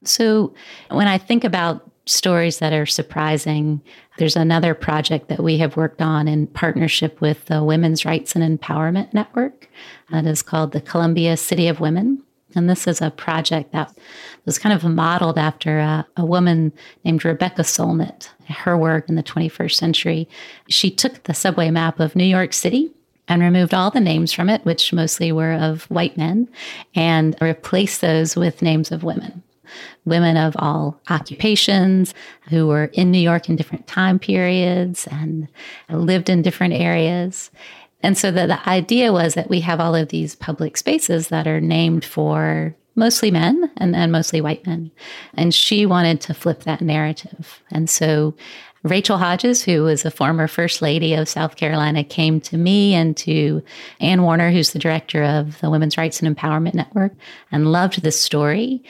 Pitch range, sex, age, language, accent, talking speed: 155-180 Hz, female, 30-49, English, American, 175 wpm